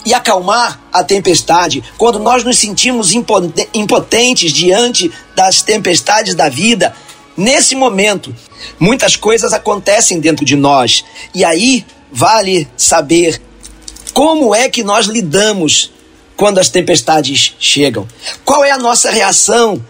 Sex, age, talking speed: male, 40-59, 120 wpm